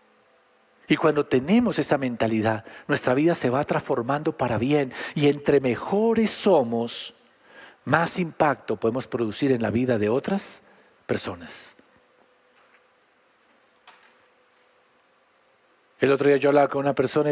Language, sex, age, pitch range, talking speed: Spanish, male, 40-59, 125-170 Hz, 120 wpm